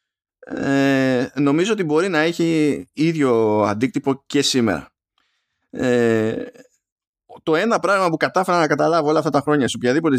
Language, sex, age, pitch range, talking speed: Greek, male, 20-39, 125-175 Hz, 140 wpm